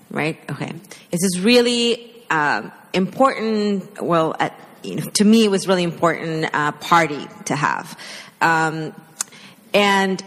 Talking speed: 140 wpm